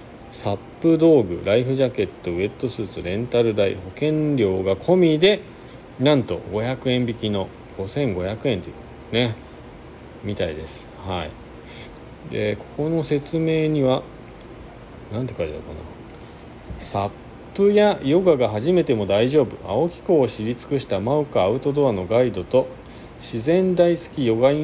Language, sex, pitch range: Japanese, male, 105-150 Hz